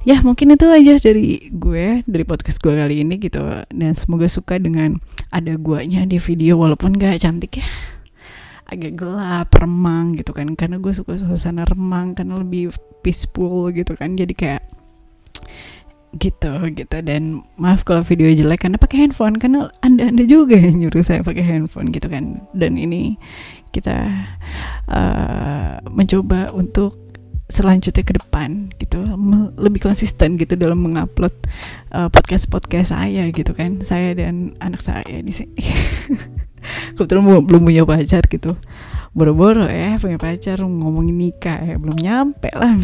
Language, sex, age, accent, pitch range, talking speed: English, female, 20-39, Indonesian, 155-195 Hz, 145 wpm